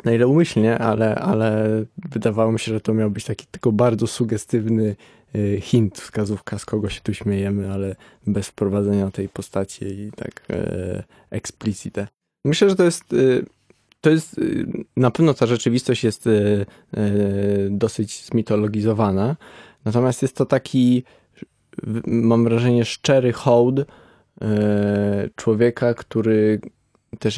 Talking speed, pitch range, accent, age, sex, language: 120 wpm, 105-120 Hz, native, 20-39, male, Polish